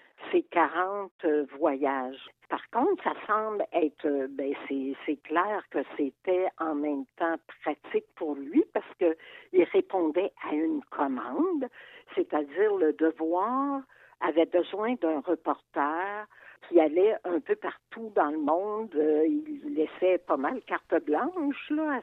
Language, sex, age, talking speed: French, female, 60-79, 135 wpm